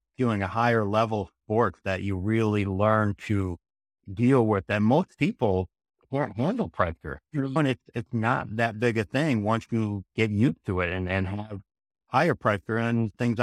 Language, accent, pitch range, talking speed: English, American, 95-115 Hz, 175 wpm